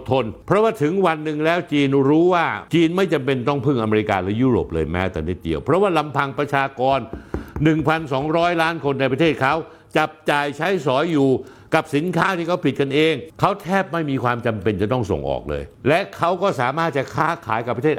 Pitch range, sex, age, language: 105-165 Hz, male, 60-79, Thai